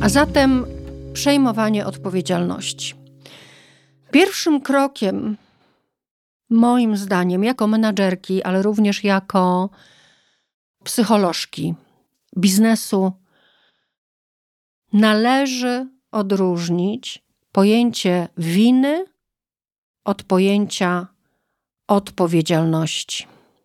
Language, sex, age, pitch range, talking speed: Polish, female, 40-59, 180-235 Hz, 55 wpm